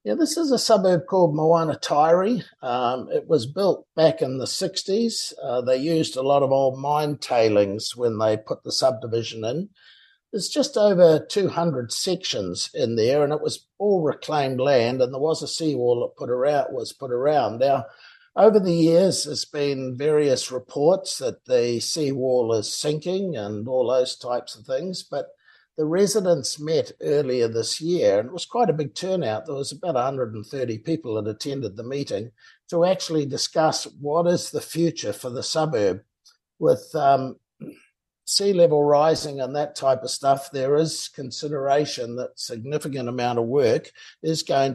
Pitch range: 130-180 Hz